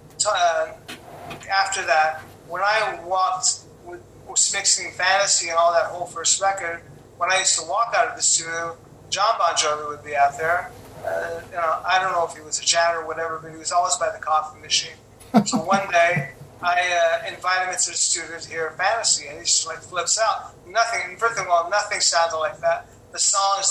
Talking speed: 200 wpm